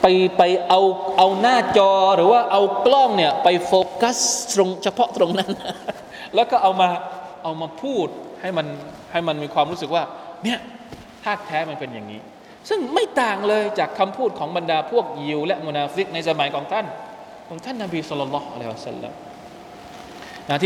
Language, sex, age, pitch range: Thai, male, 20-39, 185-305 Hz